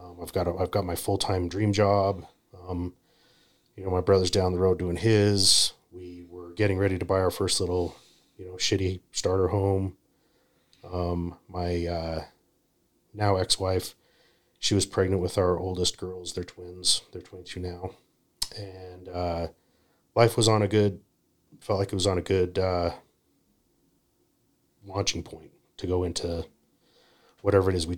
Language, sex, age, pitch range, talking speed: English, male, 30-49, 90-95 Hz, 155 wpm